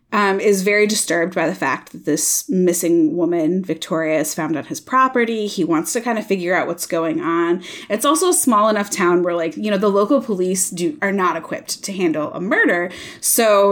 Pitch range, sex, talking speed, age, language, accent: 170-235 Hz, female, 215 wpm, 20-39, English, American